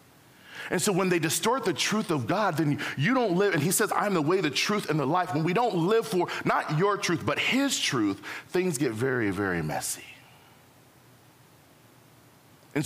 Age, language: 40-59, English